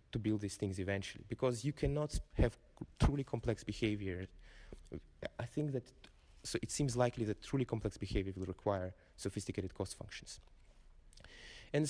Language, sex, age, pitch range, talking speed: English, male, 20-39, 100-130 Hz, 155 wpm